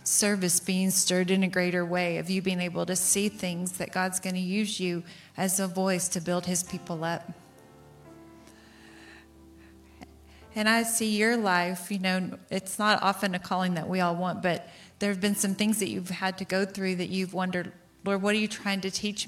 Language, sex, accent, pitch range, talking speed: English, female, American, 175-195 Hz, 200 wpm